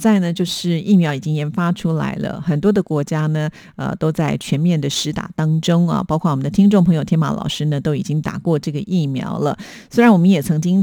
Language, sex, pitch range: Chinese, female, 150-185 Hz